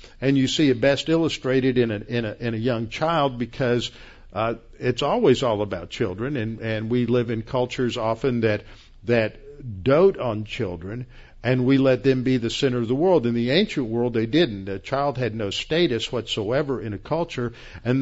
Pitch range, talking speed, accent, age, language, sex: 115-140 Hz, 195 wpm, American, 50-69, English, male